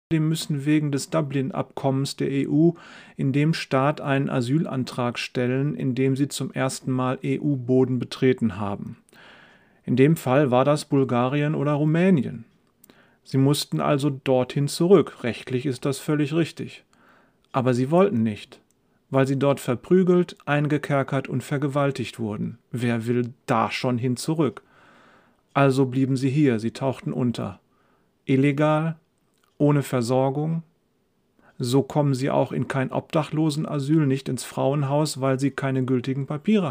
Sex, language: male, German